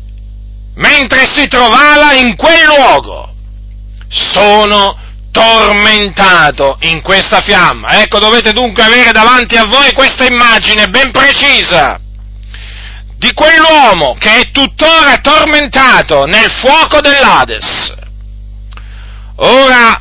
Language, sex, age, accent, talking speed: Italian, male, 40-59, native, 95 wpm